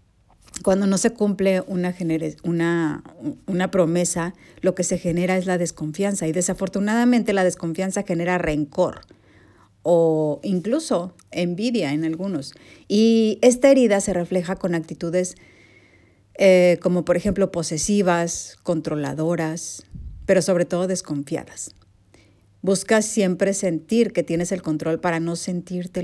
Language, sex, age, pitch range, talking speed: Spanish, female, 50-69, 150-195 Hz, 120 wpm